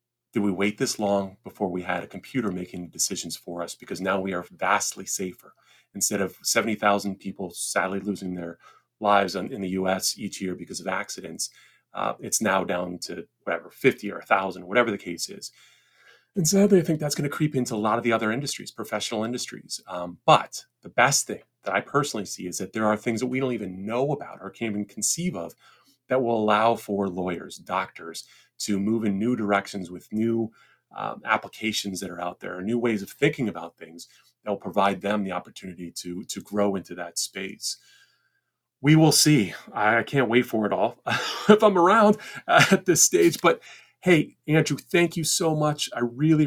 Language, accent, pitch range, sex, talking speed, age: English, American, 100-130 Hz, male, 195 wpm, 30-49